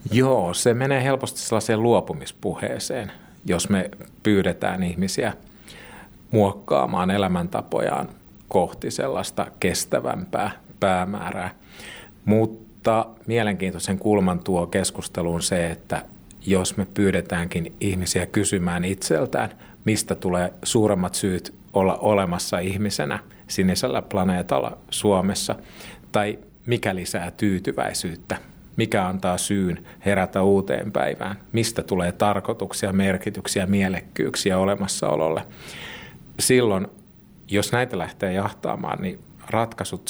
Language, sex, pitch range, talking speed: Finnish, male, 90-105 Hz, 95 wpm